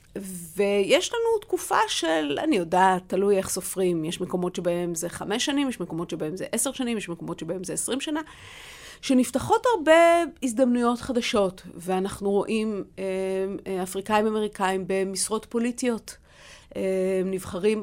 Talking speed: 125 wpm